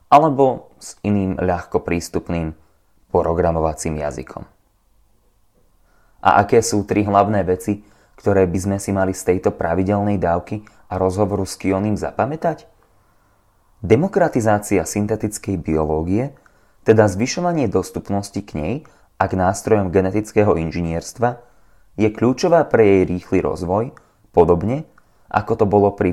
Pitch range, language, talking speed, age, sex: 90-110 Hz, Slovak, 115 wpm, 20-39, male